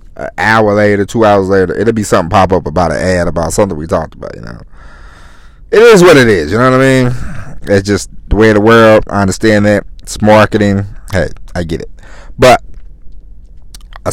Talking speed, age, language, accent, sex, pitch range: 210 wpm, 30-49, English, American, male, 85-115 Hz